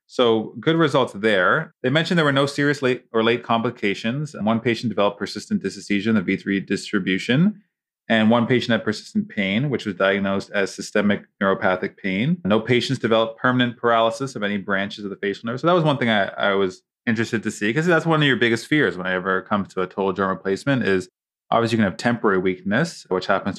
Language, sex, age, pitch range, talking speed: English, male, 20-39, 100-130 Hz, 215 wpm